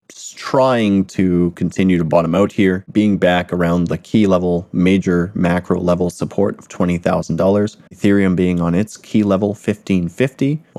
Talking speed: 145 wpm